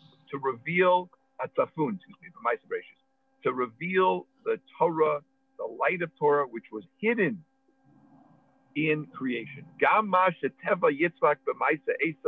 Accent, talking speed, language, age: American, 105 wpm, English, 50-69